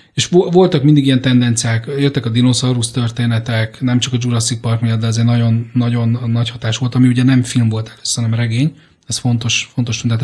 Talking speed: 205 wpm